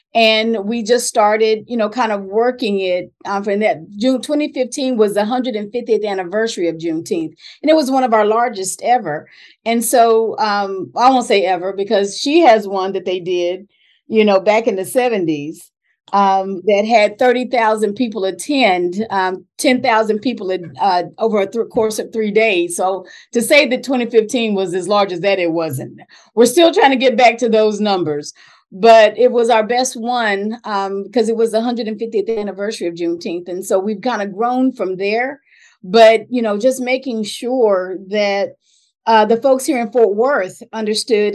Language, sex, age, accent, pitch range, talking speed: English, female, 40-59, American, 195-245 Hz, 180 wpm